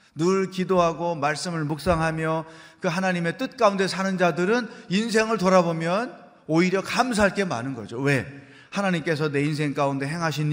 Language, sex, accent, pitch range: Korean, male, native, 135-175 Hz